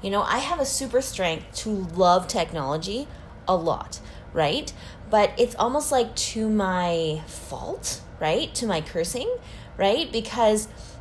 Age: 10-29